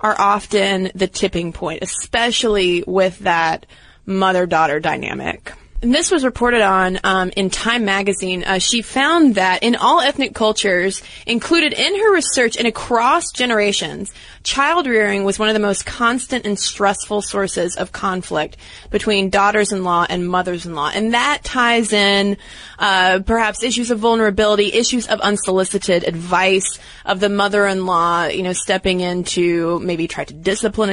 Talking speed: 145 wpm